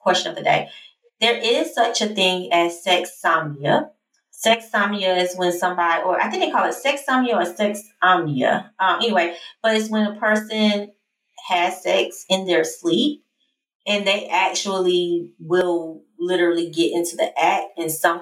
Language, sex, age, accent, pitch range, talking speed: English, female, 20-39, American, 175-255 Hz, 170 wpm